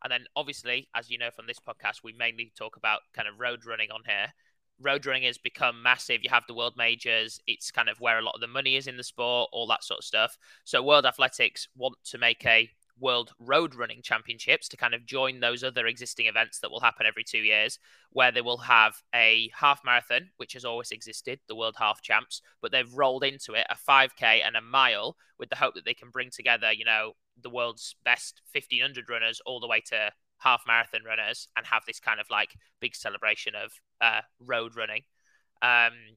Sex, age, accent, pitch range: male, 20-39, British, 115-125 Hz